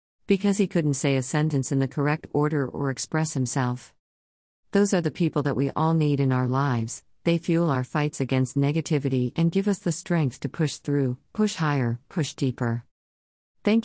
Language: English